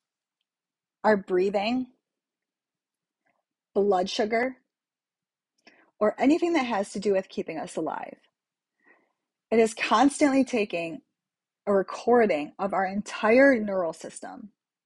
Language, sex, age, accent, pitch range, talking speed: English, female, 30-49, American, 185-245 Hz, 100 wpm